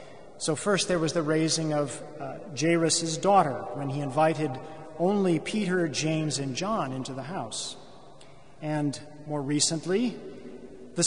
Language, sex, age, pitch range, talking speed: English, male, 40-59, 150-190 Hz, 135 wpm